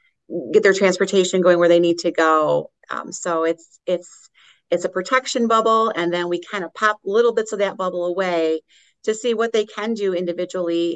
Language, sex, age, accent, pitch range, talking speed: English, female, 30-49, American, 170-195 Hz, 195 wpm